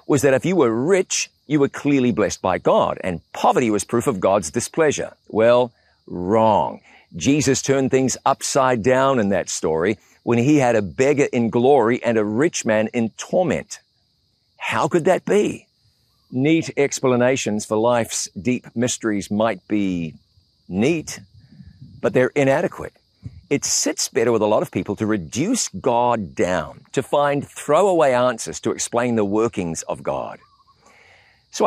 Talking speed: 155 wpm